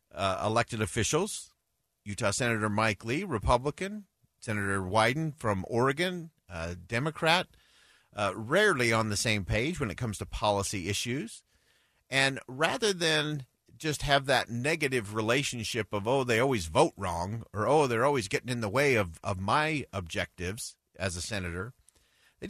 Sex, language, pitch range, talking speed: male, English, 105-150 Hz, 150 wpm